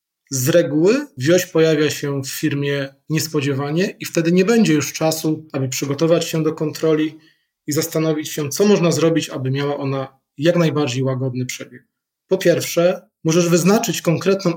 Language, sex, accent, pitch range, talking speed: Polish, male, native, 145-175 Hz, 150 wpm